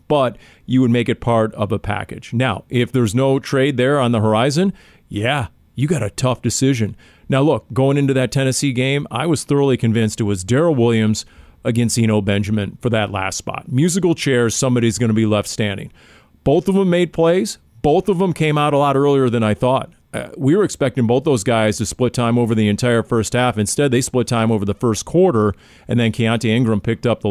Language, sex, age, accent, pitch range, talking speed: English, male, 40-59, American, 115-140 Hz, 220 wpm